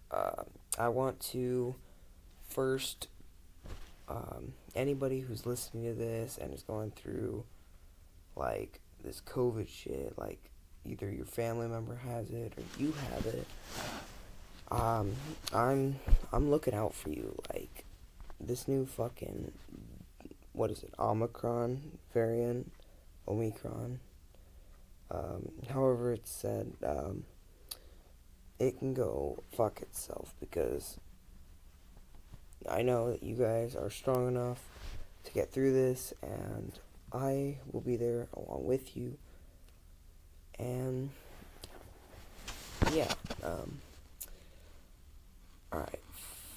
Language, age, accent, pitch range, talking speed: English, 20-39, American, 85-130 Hz, 105 wpm